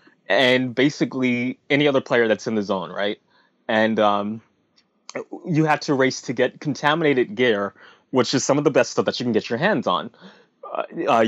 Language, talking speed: English, 185 wpm